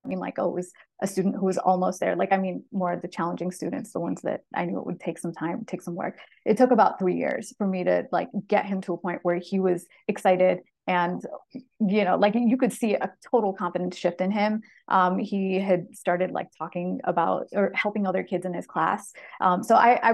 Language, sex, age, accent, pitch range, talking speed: English, female, 30-49, American, 180-205 Hz, 245 wpm